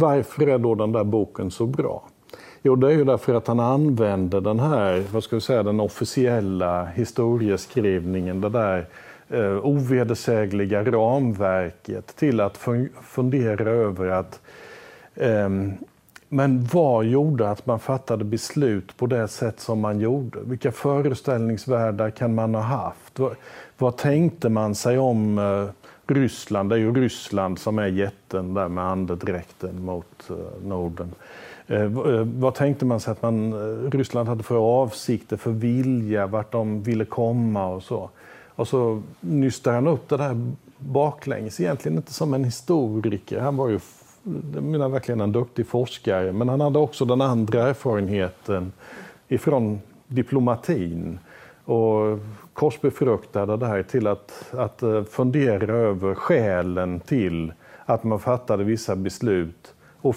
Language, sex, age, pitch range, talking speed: Swedish, male, 50-69, 100-130 Hz, 145 wpm